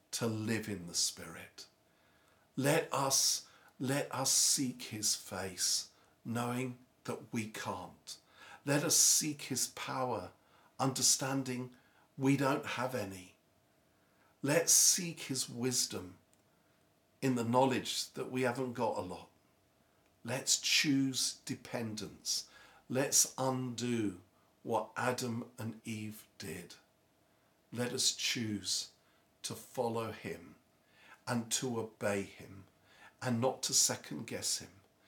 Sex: male